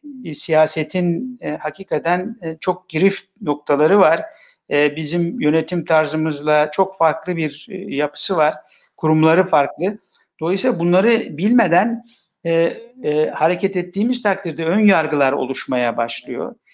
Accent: native